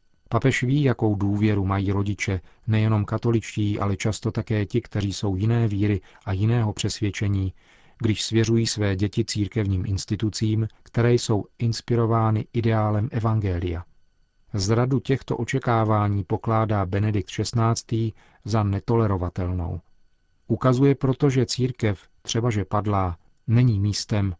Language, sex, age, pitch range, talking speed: Czech, male, 40-59, 100-115 Hz, 115 wpm